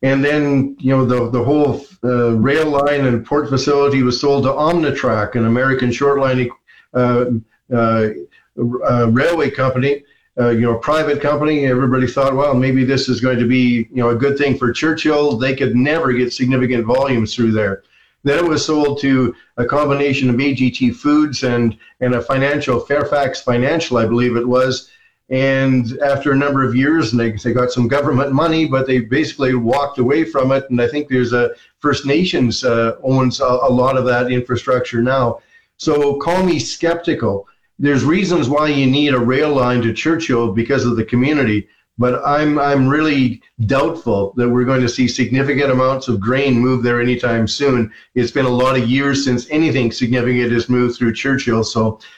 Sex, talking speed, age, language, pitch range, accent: male, 185 wpm, 50-69, English, 120-140 Hz, American